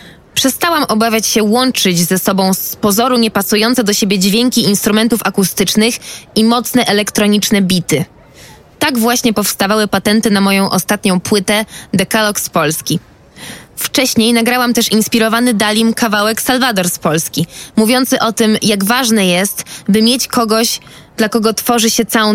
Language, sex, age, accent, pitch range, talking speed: Polish, female, 20-39, native, 195-235 Hz, 140 wpm